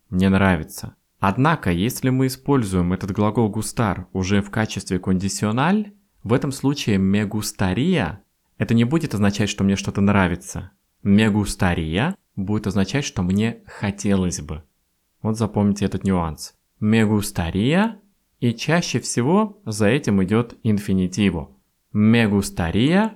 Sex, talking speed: male, 115 wpm